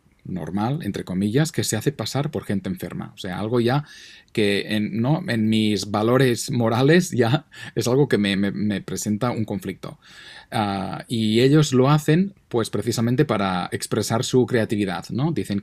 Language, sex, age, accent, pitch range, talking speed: Spanish, male, 30-49, Spanish, 105-125 Hz, 155 wpm